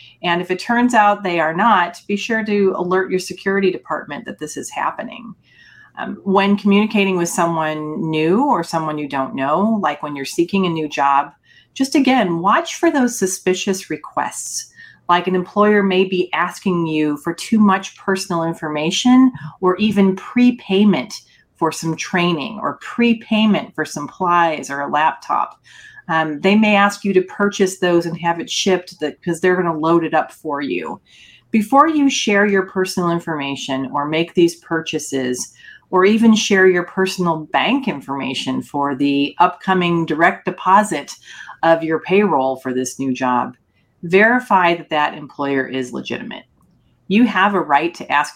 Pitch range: 155-200 Hz